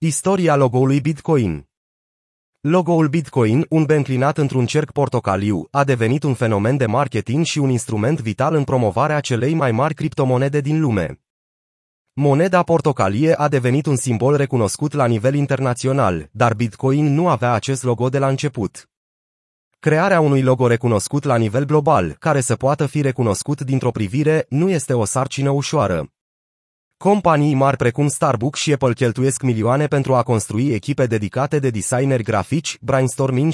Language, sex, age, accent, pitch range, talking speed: Romanian, male, 30-49, native, 120-150 Hz, 150 wpm